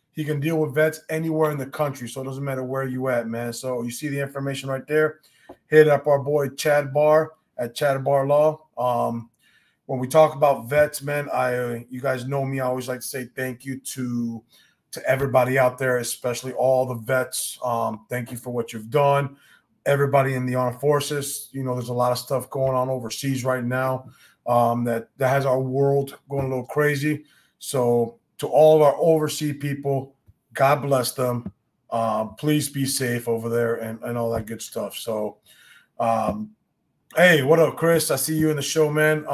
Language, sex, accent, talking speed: English, male, American, 200 wpm